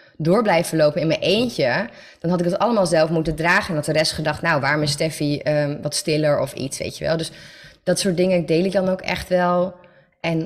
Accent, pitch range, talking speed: Dutch, 150-185 Hz, 240 wpm